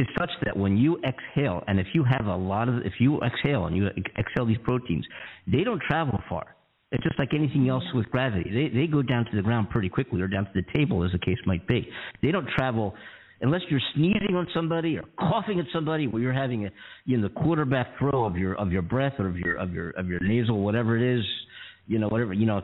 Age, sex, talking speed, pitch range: 50-69, male, 250 wpm, 105-150 Hz